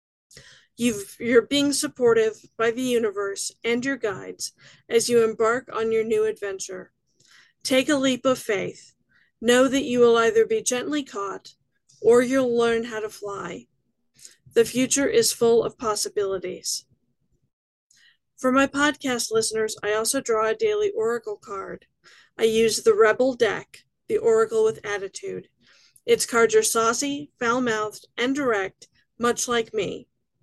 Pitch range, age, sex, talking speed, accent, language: 220-275 Hz, 40-59, female, 140 wpm, American, English